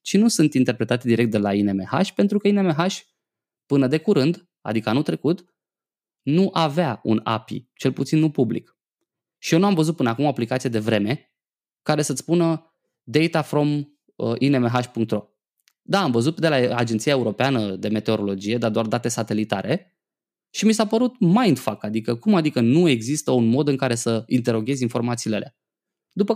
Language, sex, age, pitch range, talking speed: Romanian, male, 20-39, 115-165 Hz, 170 wpm